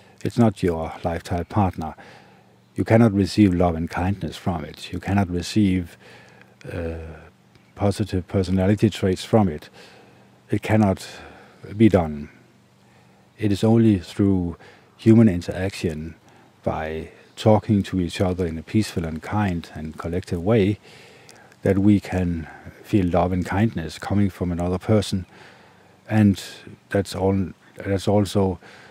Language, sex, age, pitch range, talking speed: English, male, 50-69, 85-100 Hz, 125 wpm